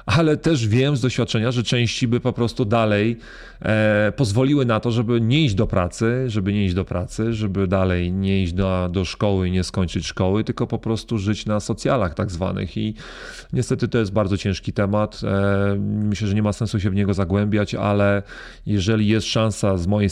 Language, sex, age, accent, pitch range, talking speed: Polish, male, 30-49, native, 95-110 Hz, 195 wpm